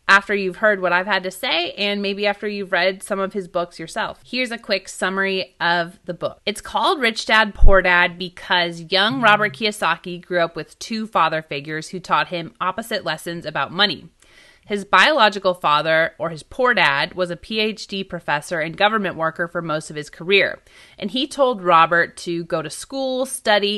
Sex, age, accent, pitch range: female, 30-49, American, 170-205 Hz